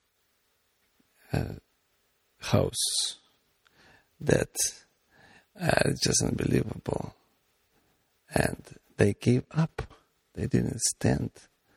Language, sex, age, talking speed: English, male, 50-69, 70 wpm